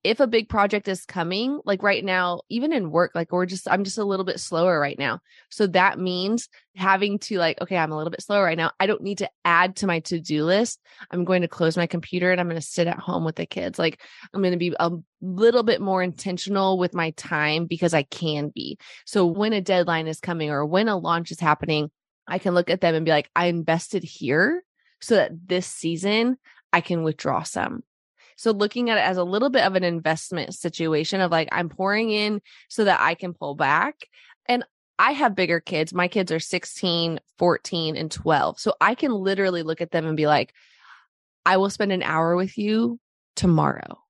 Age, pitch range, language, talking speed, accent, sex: 20-39, 170-210 Hz, English, 220 wpm, American, female